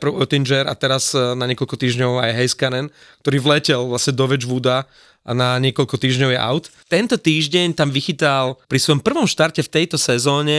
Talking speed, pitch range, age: 165 wpm, 125-150 Hz, 30-49